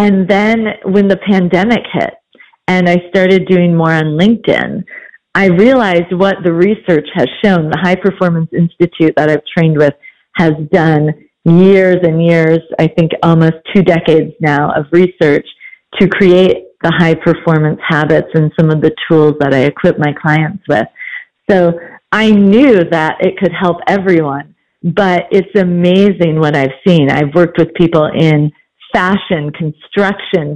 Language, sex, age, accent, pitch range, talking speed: English, female, 40-59, American, 160-195 Hz, 155 wpm